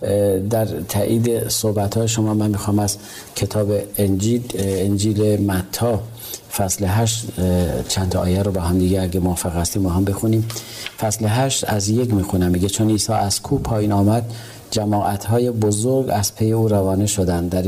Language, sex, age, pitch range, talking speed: Persian, male, 40-59, 95-115 Hz, 155 wpm